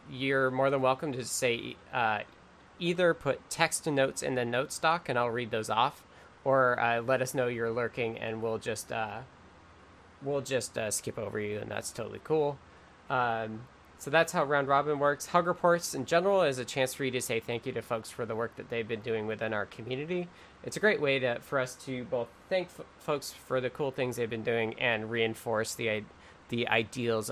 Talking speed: 215 wpm